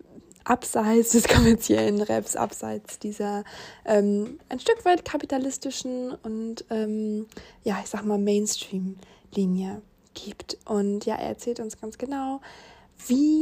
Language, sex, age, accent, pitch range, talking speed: German, female, 20-39, German, 215-245 Hz, 120 wpm